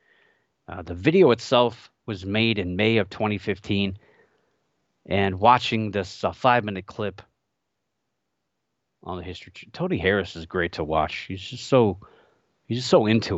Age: 30-49